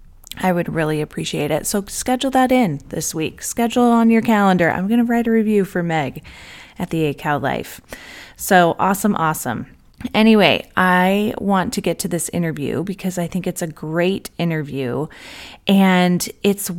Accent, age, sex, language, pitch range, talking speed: American, 30-49, female, English, 165-200 Hz, 170 wpm